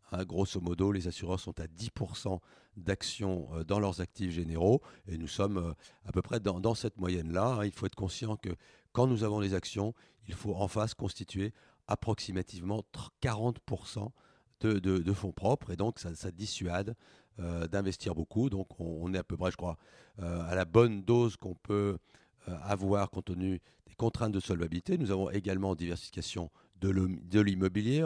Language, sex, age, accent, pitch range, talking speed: French, male, 40-59, French, 90-110 Hz, 170 wpm